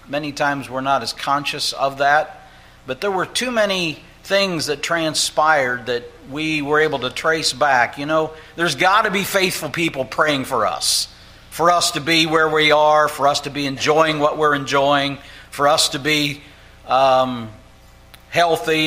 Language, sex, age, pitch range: English, male, 60-79, 115-150 Hz